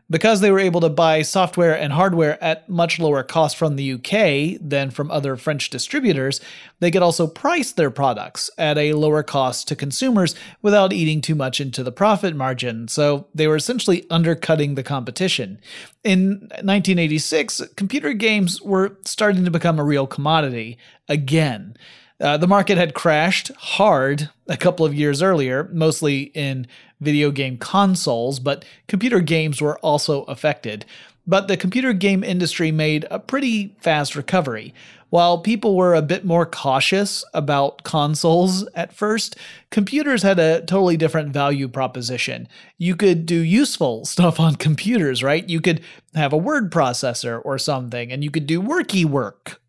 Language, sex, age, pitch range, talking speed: English, male, 30-49, 145-190 Hz, 160 wpm